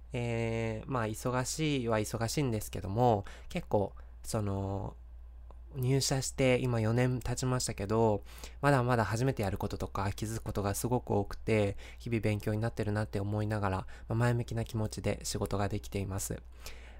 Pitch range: 100-120 Hz